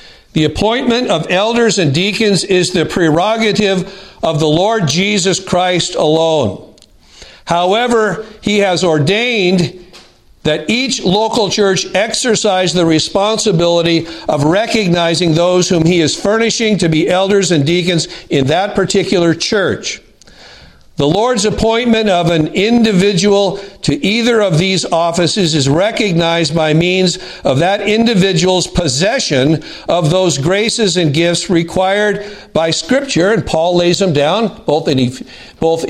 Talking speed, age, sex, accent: 125 wpm, 50-69, male, American